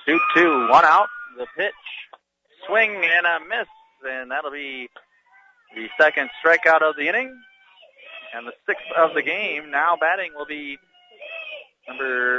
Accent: American